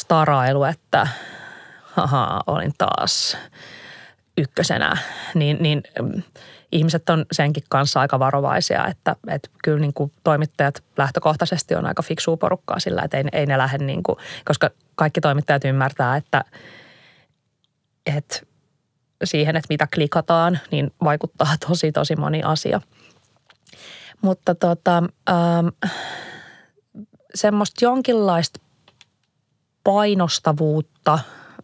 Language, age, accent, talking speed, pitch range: Finnish, 20-39, native, 105 wpm, 145-170 Hz